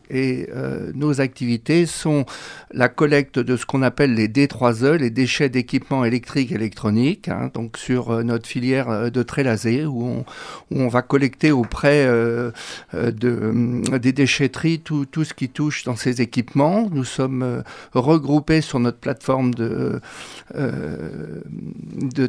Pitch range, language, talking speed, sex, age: 120-145 Hz, French, 145 wpm, male, 60-79